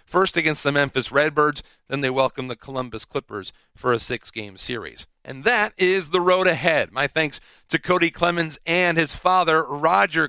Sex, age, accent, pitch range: male, 40-59, American, 140-170 Hz